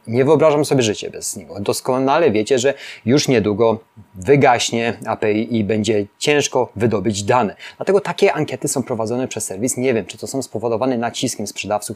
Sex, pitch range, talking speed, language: male, 115-145 Hz, 165 wpm, Polish